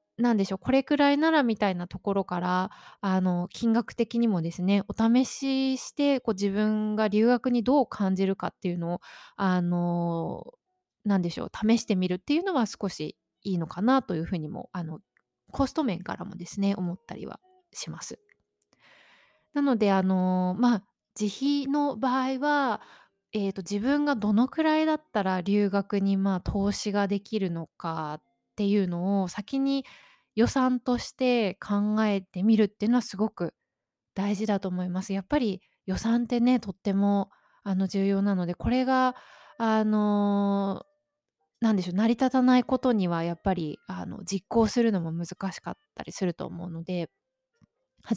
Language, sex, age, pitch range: Japanese, female, 20-39, 190-255 Hz